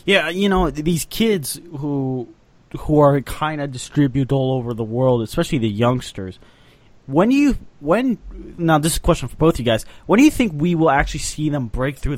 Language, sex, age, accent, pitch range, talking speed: English, male, 20-39, American, 115-150 Hz, 200 wpm